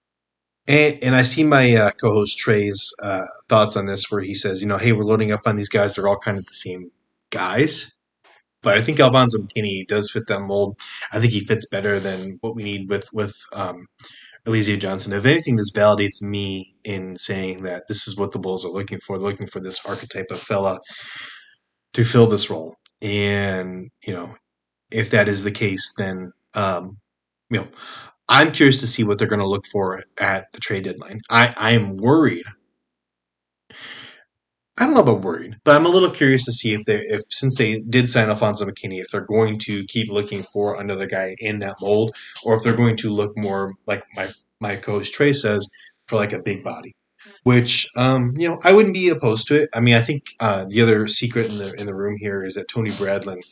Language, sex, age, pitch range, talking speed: English, male, 20-39, 100-115 Hz, 210 wpm